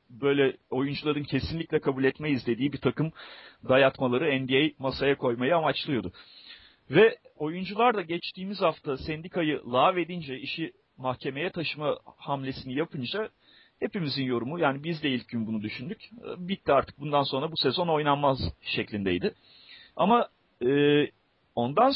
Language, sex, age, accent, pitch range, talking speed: Turkish, male, 40-59, native, 130-165 Hz, 125 wpm